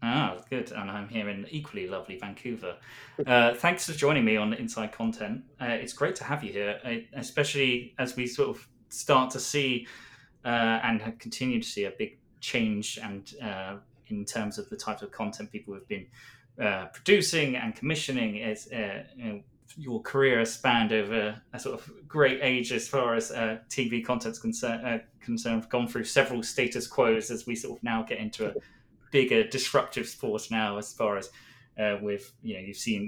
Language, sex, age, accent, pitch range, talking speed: English, male, 20-39, British, 110-135 Hz, 190 wpm